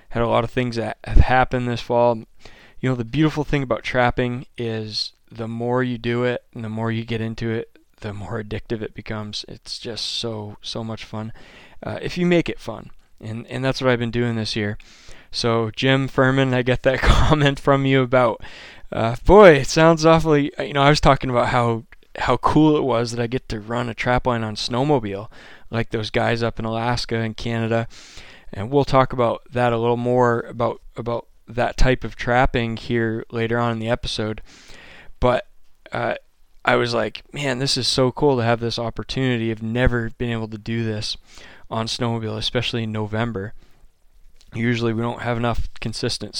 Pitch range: 110-125 Hz